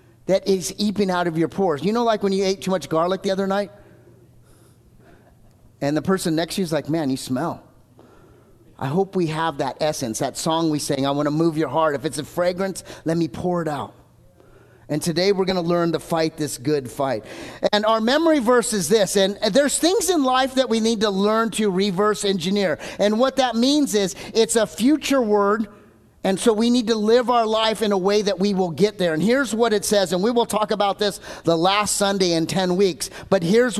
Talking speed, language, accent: 230 wpm, English, American